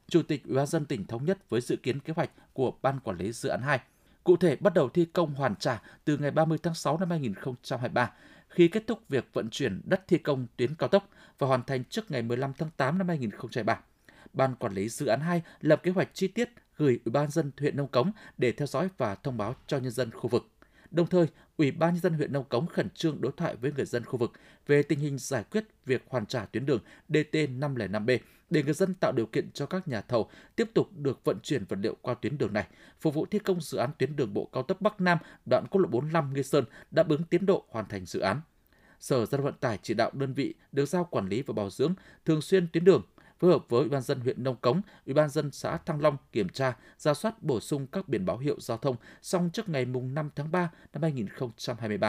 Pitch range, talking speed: 130-175 Hz, 250 wpm